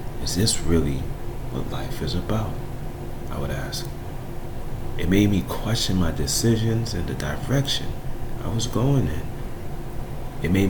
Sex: male